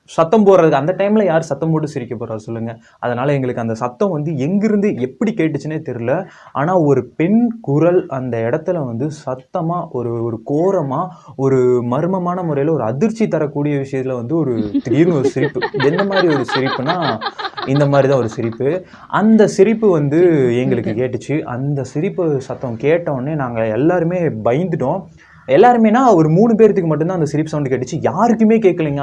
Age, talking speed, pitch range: 20-39, 155 wpm, 125-175 Hz